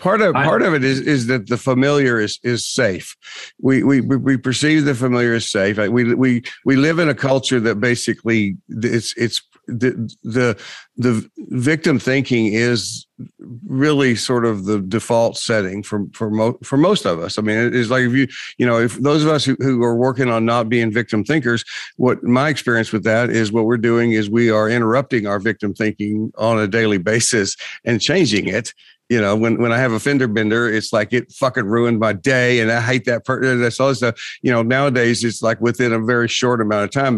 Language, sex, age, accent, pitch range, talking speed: English, male, 50-69, American, 110-130 Hz, 215 wpm